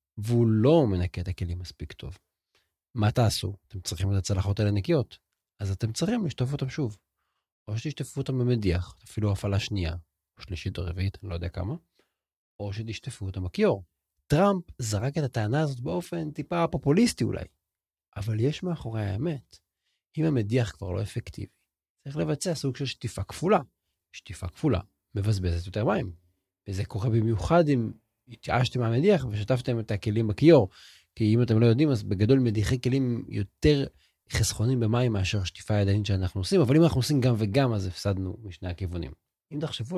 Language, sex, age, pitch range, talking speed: Hebrew, male, 40-59, 95-130 Hz, 160 wpm